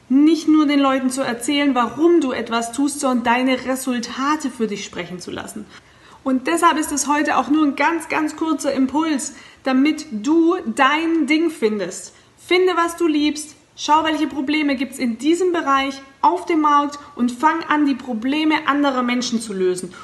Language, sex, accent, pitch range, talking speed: German, female, German, 245-305 Hz, 175 wpm